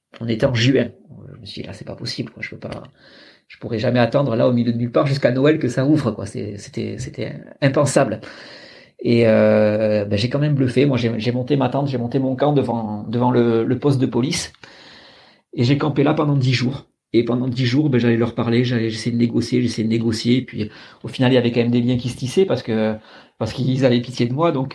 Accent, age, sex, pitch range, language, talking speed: French, 40-59, male, 115-130 Hz, French, 255 wpm